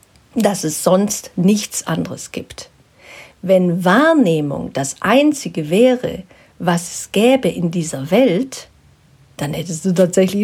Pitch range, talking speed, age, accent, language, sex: 170-240 Hz, 120 wpm, 50-69, German, German, female